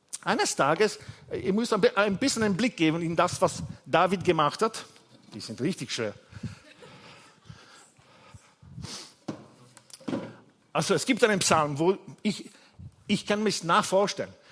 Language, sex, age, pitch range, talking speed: German, male, 50-69, 160-240 Hz, 130 wpm